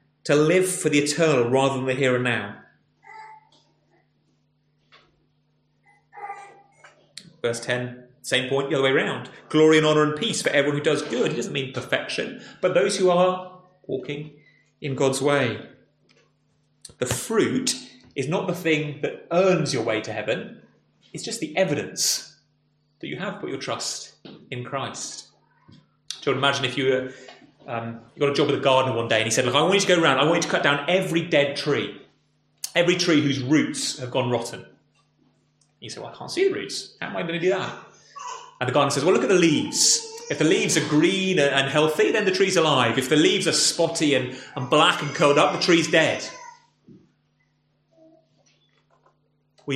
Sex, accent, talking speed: male, British, 190 wpm